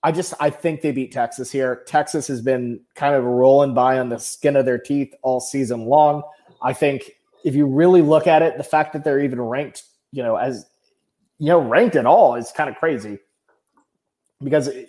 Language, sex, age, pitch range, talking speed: English, male, 30-49, 130-175 Hz, 205 wpm